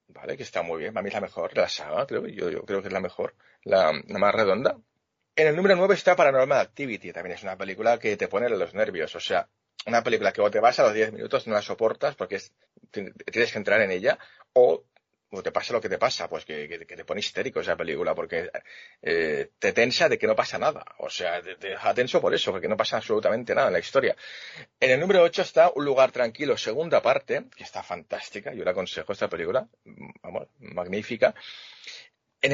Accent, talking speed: Spanish, 230 wpm